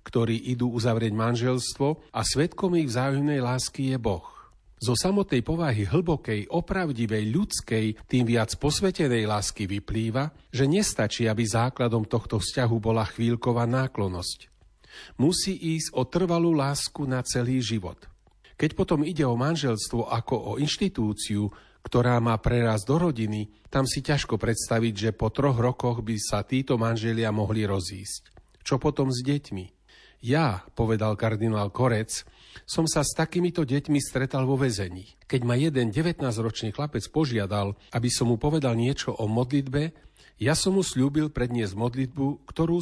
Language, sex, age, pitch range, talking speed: Slovak, male, 40-59, 110-145 Hz, 145 wpm